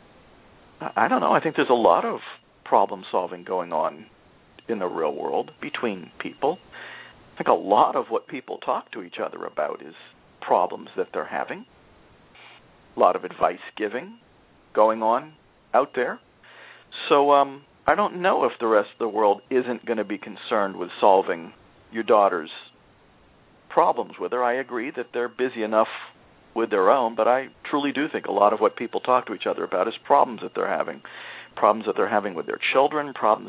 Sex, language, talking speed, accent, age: male, English, 185 wpm, American, 50-69